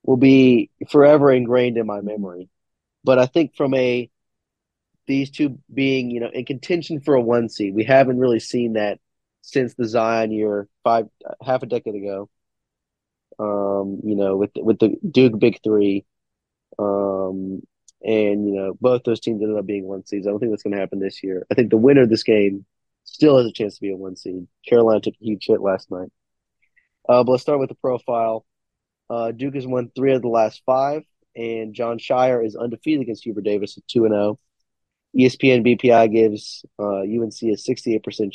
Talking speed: 190 wpm